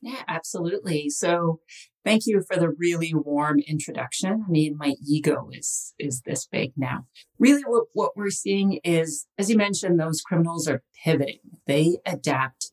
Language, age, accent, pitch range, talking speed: English, 40-59, American, 145-175 Hz, 160 wpm